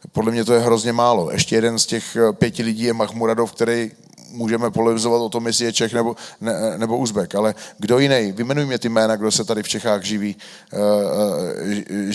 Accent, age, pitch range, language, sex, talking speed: native, 30-49, 115-135 Hz, Czech, male, 205 wpm